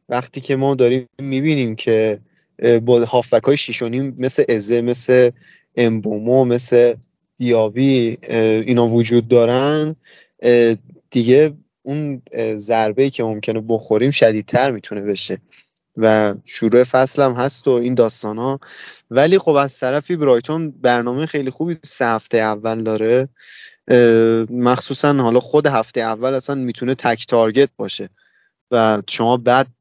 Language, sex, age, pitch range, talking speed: Persian, male, 20-39, 115-130 Hz, 125 wpm